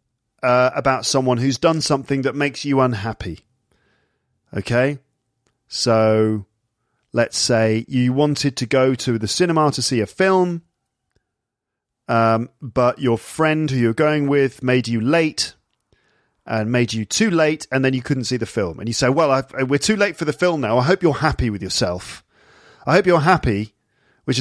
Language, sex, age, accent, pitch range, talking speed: English, male, 40-59, British, 115-140 Hz, 170 wpm